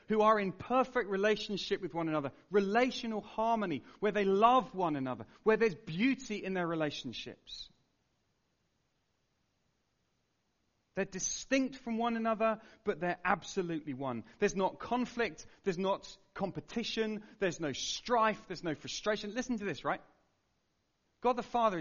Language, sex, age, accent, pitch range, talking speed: English, male, 40-59, British, 155-225 Hz, 135 wpm